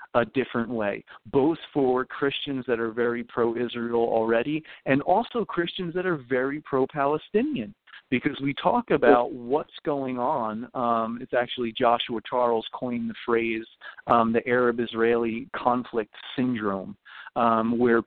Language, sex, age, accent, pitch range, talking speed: English, male, 40-59, American, 115-135 Hz, 135 wpm